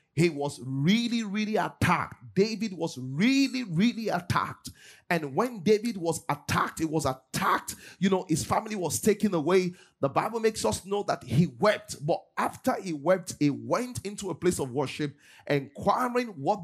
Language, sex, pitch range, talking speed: English, male, 150-215 Hz, 165 wpm